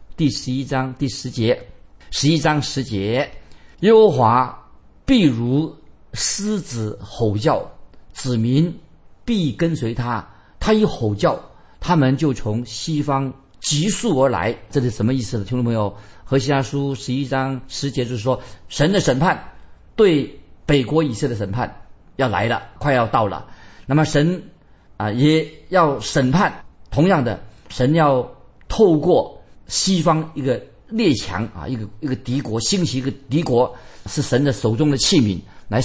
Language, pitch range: Chinese, 115-150 Hz